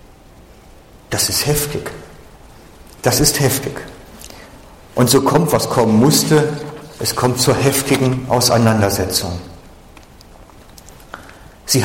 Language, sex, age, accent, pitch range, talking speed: German, male, 50-69, German, 110-140 Hz, 90 wpm